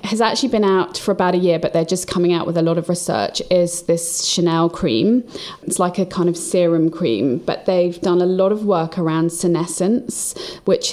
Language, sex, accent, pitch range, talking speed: English, female, British, 165-185 Hz, 215 wpm